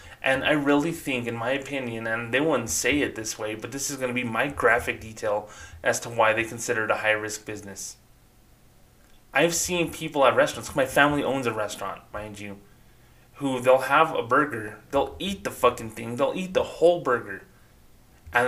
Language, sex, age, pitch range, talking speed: English, male, 20-39, 115-145 Hz, 195 wpm